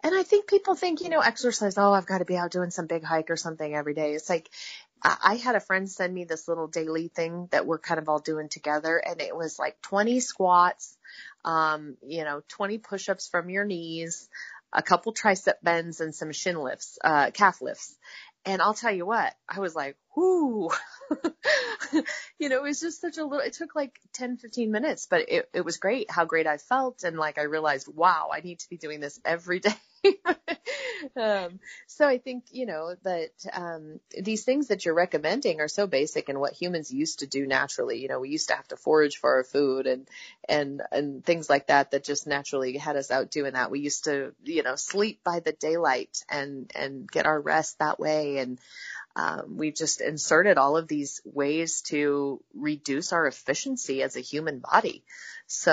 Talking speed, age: 210 wpm, 30-49